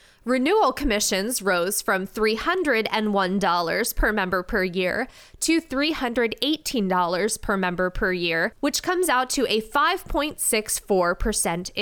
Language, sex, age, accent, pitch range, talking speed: English, female, 20-39, American, 190-275 Hz, 105 wpm